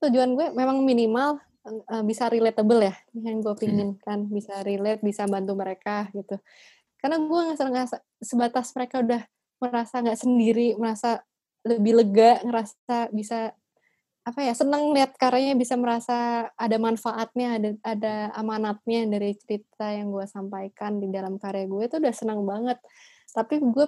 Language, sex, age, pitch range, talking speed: Indonesian, female, 20-39, 205-250 Hz, 145 wpm